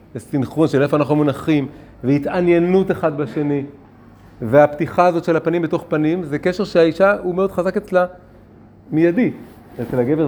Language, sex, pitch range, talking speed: Hebrew, male, 110-155 Hz, 145 wpm